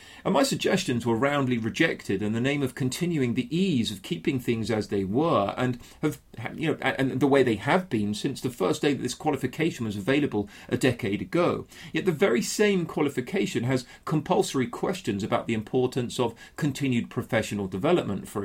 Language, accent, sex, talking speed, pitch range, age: English, British, male, 185 wpm, 115-170 Hz, 40-59